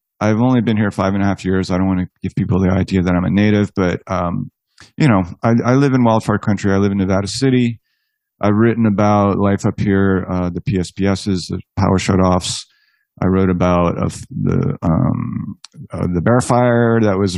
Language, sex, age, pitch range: English, male, 30-49, 95-115 Hz